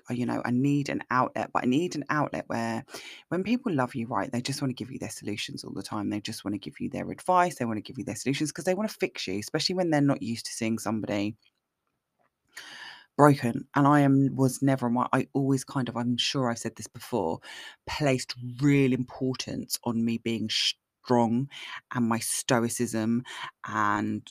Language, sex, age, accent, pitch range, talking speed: English, female, 20-39, British, 110-130 Hz, 205 wpm